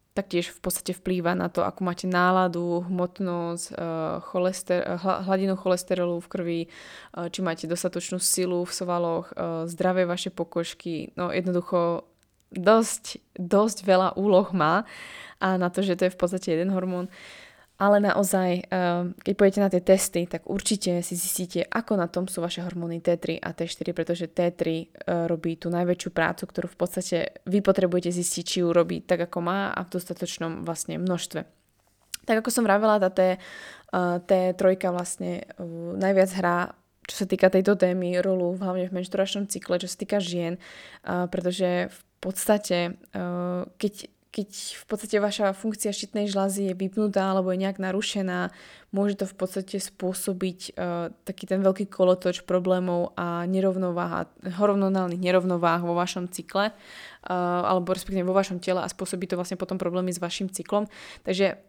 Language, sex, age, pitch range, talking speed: Slovak, female, 20-39, 175-190 Hz, 155 wpm